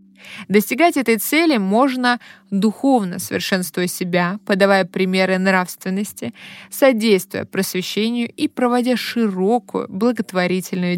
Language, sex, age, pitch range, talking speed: Russian, female, 20-39, 185-235 Hz, 85 wpm